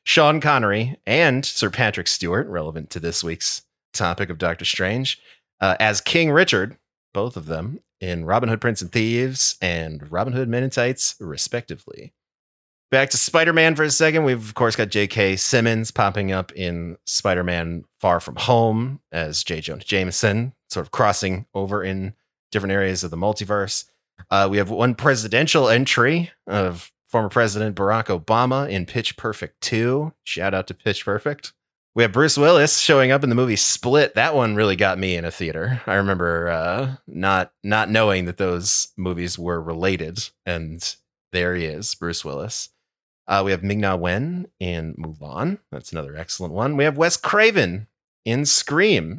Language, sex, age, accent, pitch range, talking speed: English, male, 30-49, American, 90-125 Hz, 175 wpm